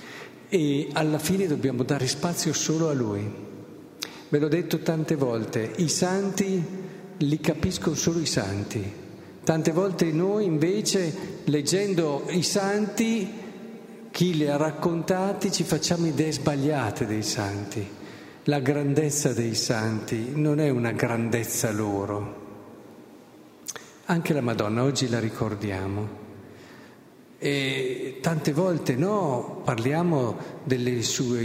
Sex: male